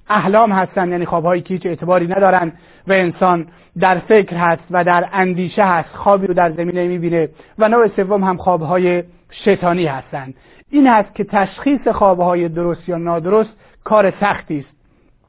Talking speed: 155 wpm